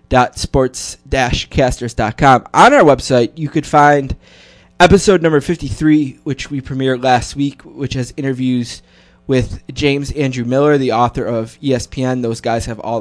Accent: American